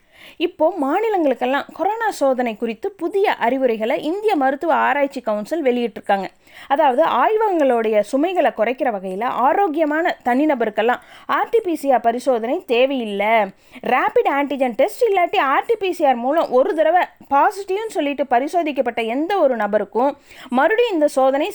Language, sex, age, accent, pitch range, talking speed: Tamil, female, 20-39, native, 240-340 Hz, 110 wpm